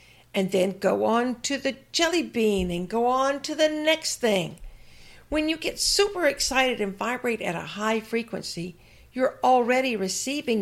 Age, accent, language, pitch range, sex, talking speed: 60-79, American, English, 165-235 Hz, female, 165 wpm